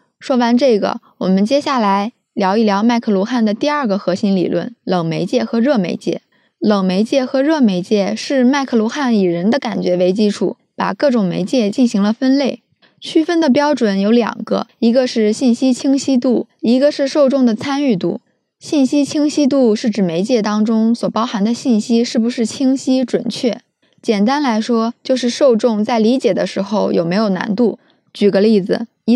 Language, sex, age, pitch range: Chinese, female, 20-39, 210-260 Hz